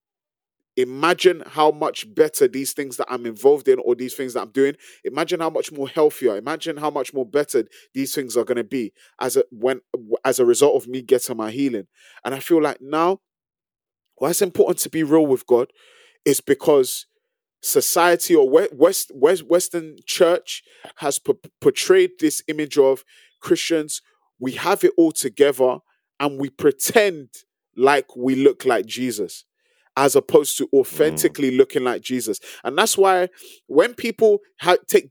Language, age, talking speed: English, 20-39, 170 wpm